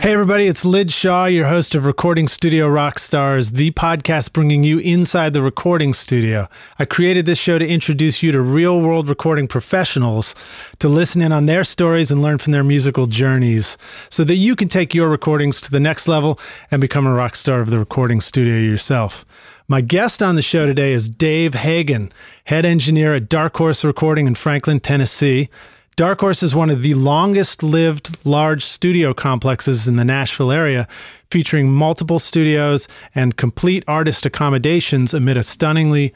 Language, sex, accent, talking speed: English, male, American, 175 wpm